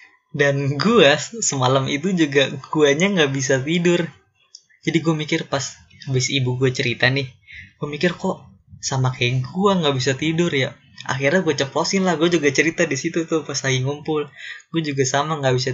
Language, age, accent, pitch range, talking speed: Indonesian, 20-39, native, 130-160 Hz, 175 wpm